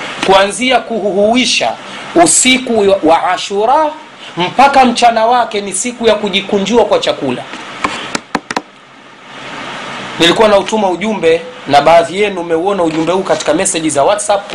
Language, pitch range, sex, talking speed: Swahili, 170-240 Hz, male, 115 wpm